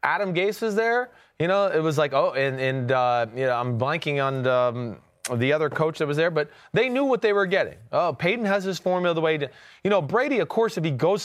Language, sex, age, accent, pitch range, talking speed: English, male, 30-49, American, 135-170 Hz, 265 wpm